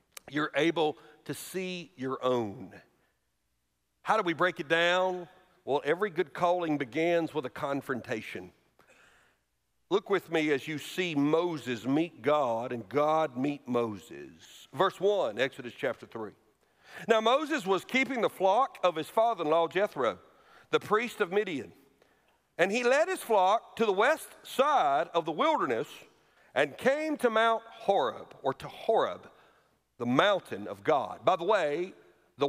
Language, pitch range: English, 150-230 Hz